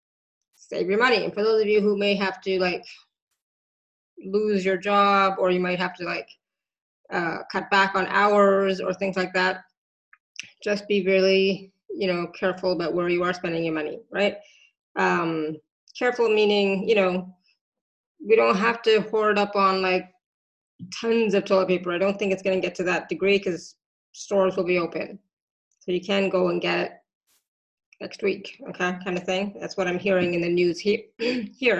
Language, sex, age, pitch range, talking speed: English, female, 20-39, 185-225 Hz, 185 wpm